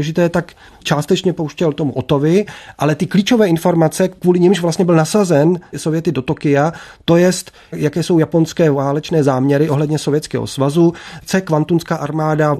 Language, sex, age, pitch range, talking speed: Czech, male, 30-49, 150-170 Hz, 155 wpm